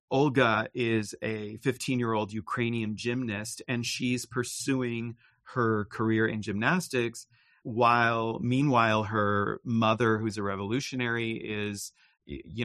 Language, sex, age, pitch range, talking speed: English, male, 40-59, 110-130 Hz, 105 wpm